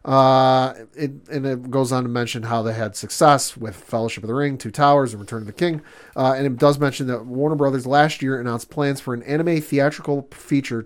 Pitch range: 130-175 Hz